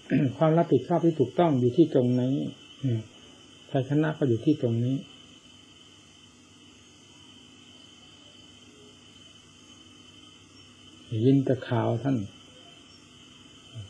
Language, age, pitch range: Thai, 60-79, 120-145 Hz